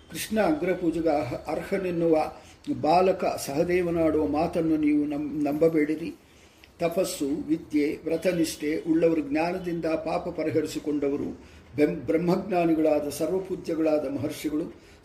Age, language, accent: 50-69, English, Indian